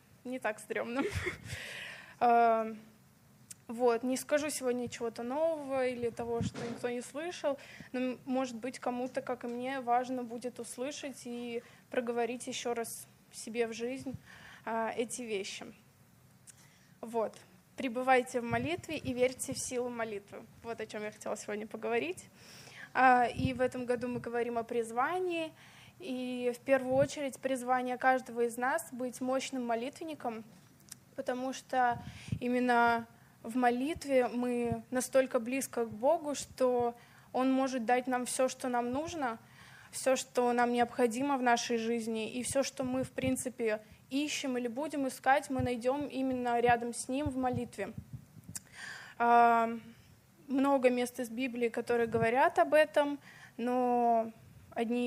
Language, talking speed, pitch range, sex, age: Russian, 135 wpm, 235-260 Hz, female, 20-39